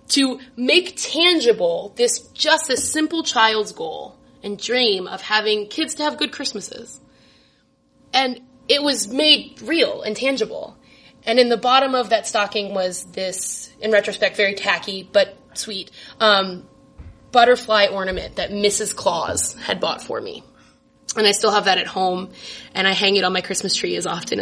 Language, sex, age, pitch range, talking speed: English, female, 20-39, 190-260 Hz, 165 wpm